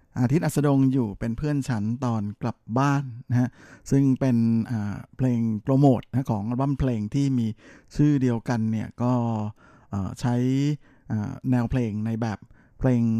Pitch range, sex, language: 115-135 Hz, male, Thai